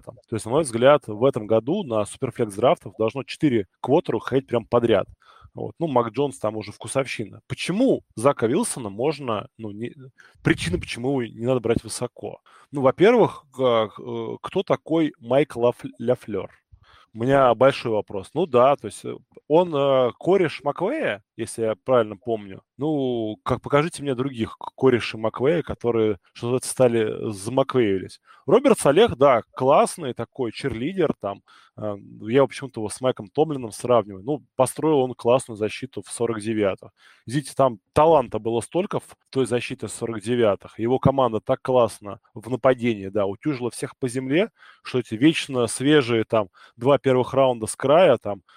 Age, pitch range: 20-39, 110-135 Hz